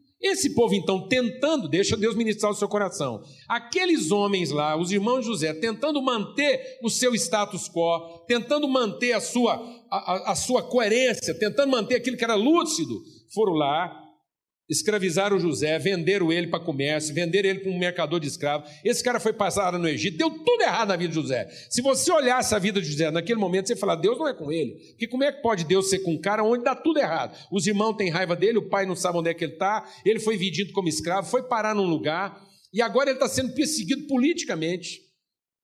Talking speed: 210 wpm